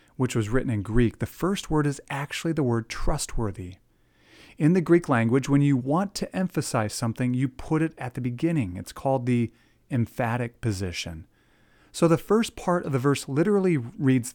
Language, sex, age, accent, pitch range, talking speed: English, male, 40-59, American, 110-150 Hz, 180 wpm